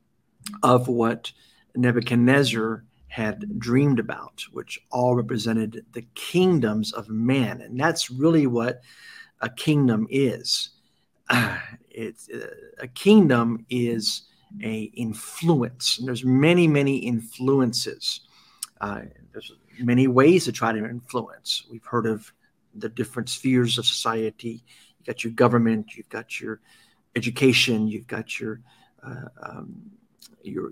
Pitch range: 115-135 Hz